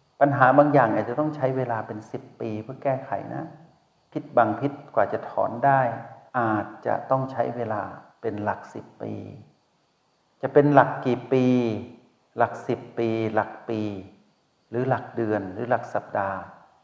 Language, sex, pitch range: Thai, male, 105-140 Hz